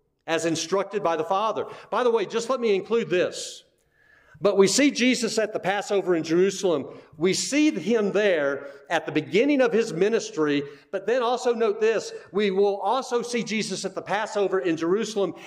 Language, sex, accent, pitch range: English, male, American, 155-220 Hz